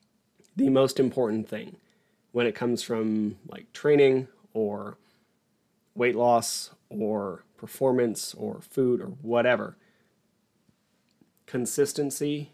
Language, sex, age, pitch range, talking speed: English, male, 30-49, 110-135 Hz, 95 wpm